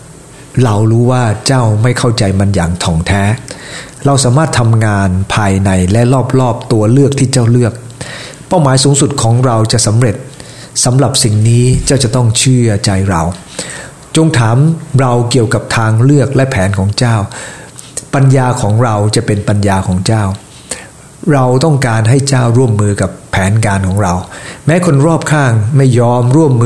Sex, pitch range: male, 110-135 Hz